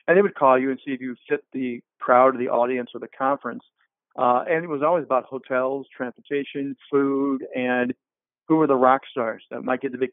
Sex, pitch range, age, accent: male, 125-145 Hz, 40-59, American